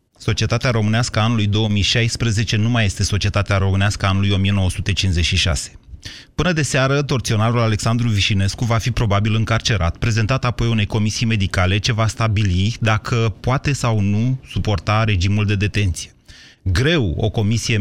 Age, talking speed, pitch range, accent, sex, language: 30-49, 135 wpm, 100-130 Hz, native, male, Romanian